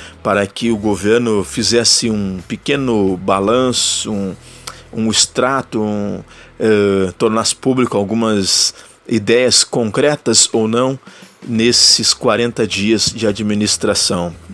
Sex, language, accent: male, Portuguese, Brazilian